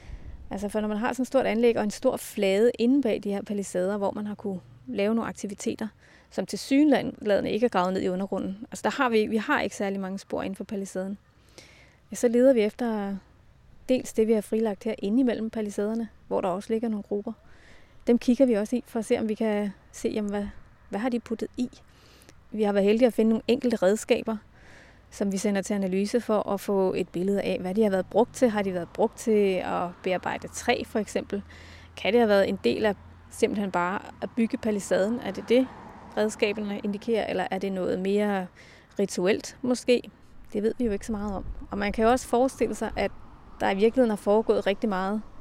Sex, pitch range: female, 200-230 Hz